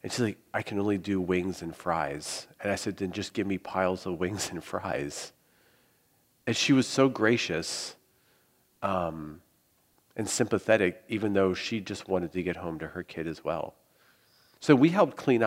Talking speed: 180 wpm